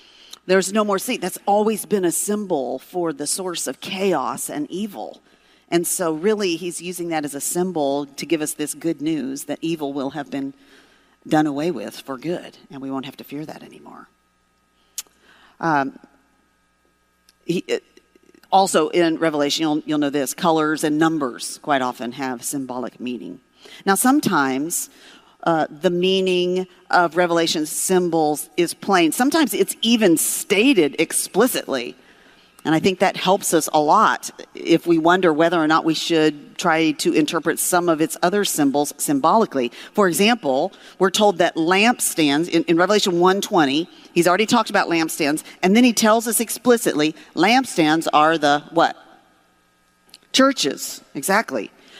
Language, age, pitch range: English, 50-69, 150-200 Hz